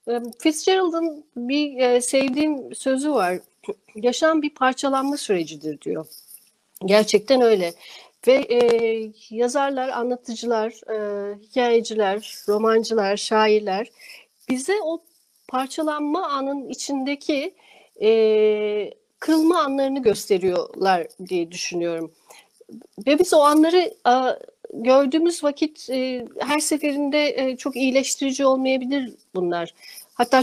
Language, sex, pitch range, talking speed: Turkish, female, 220-295 Hz, 95 wpm